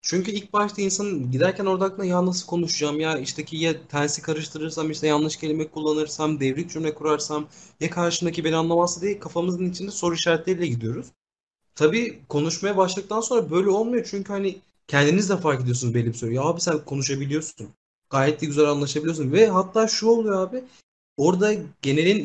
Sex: male